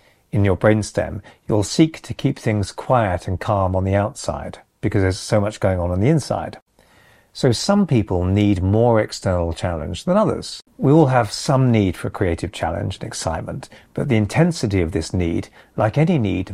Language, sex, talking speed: English, male, 185 wpm